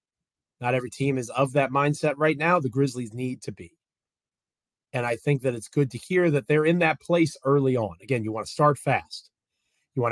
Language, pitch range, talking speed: English, 125-150 Hz, 220 wpm